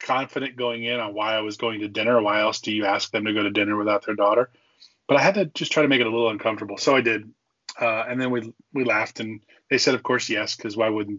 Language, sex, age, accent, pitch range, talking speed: English, male, 20-39, American, 110-125 Hz, 285 wpm